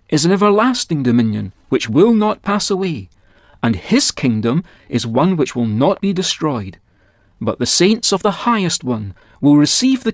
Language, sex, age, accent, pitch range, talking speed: English, male, 40-59, British, 115-185 Hz, 170 wpm